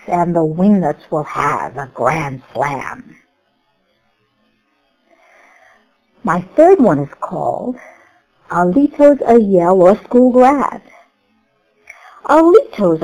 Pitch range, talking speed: 175-255 Hz, 85 wpm